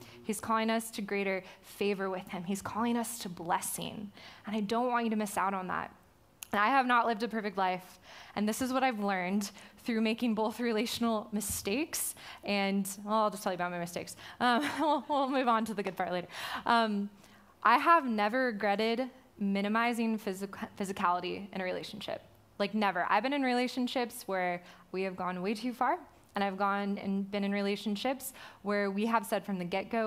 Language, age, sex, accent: English, 20-39, female, American